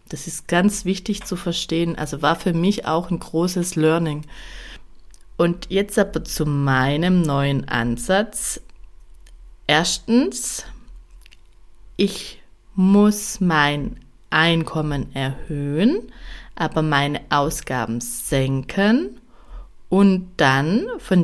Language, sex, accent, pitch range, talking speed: German, female, German, 150-195 Hz, 95 wpm